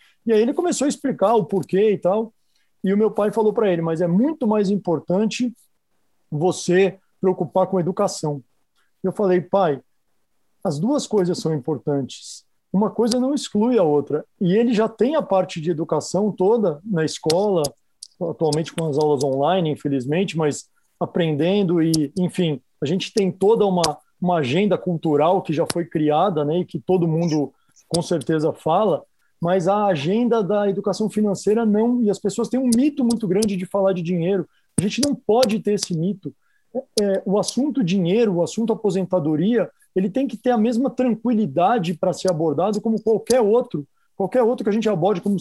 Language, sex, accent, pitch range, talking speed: Portuguese, male, Brazilian, 175-220 Hz, 175 wpm